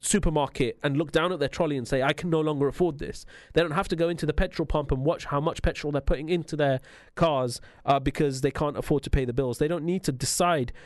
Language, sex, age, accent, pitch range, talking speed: English, male, 30-49, British, 130-165 Hz, 265 wpm